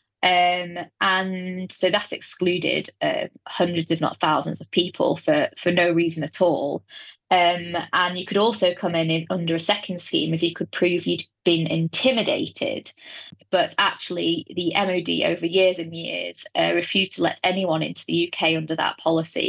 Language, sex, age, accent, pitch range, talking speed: English, female, 20-39, British, 160-185 Hz, 170 wpm